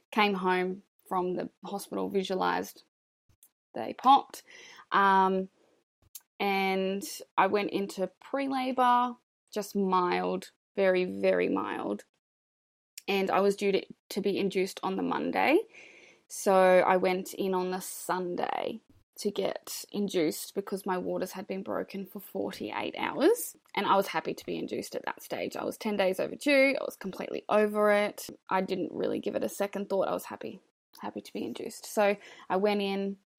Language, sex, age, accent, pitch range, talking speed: English, female, 20-39, Australian, 190-240 Hz, 160 wpm